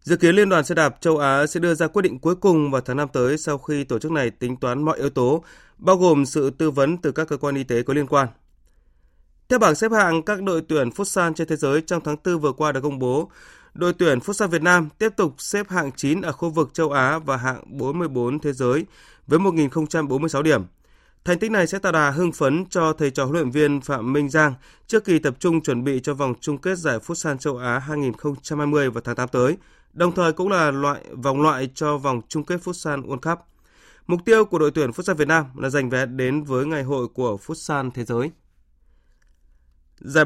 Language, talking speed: Vietnamese, 230 wpm